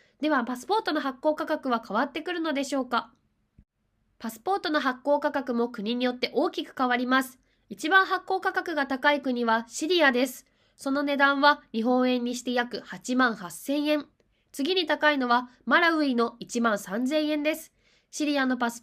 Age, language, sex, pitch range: 20-39, Japanese, female, 235-295 Hz